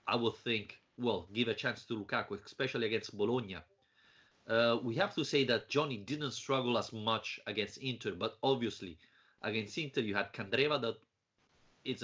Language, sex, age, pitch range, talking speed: English, male, 30-49, 110-135 Hz, 165 wpm